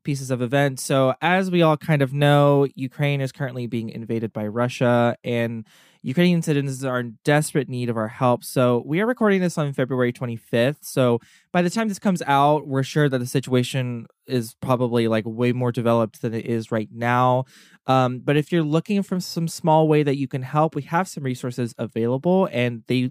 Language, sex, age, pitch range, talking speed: English, male, 20-39, 120-150 Hz, 205 wpm